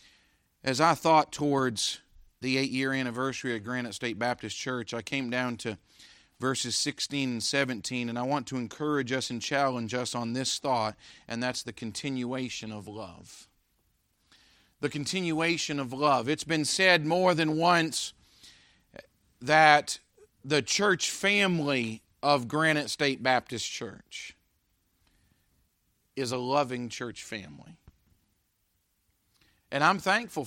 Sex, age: male, 40-59